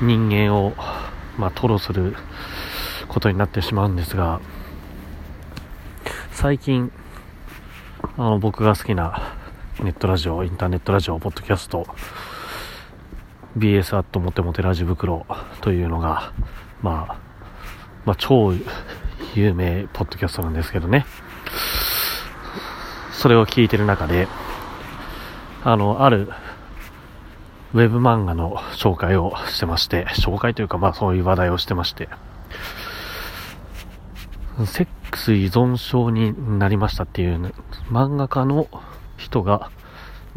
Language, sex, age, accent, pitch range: Japanese, male, 40-59, native, 90-115 Hz